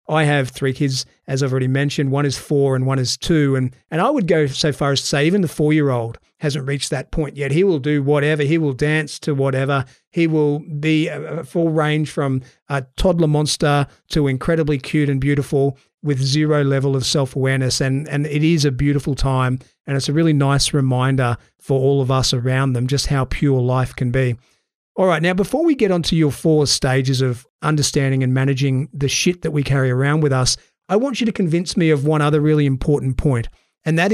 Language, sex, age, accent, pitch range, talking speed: English, male, 40-59, Australian, 135-155 Hz, 215 wpm